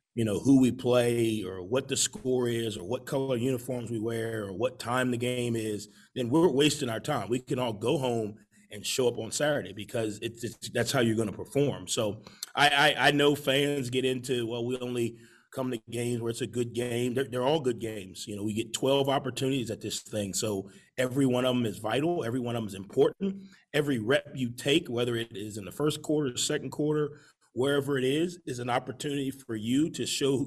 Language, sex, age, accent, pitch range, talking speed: English, male, 30-49, American, 115-140 Hz, 225 wpm